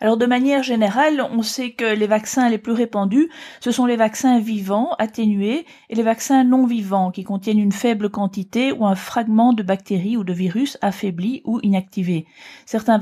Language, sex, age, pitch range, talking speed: French, female, 40-59, 200-245 Hz, 185 wpm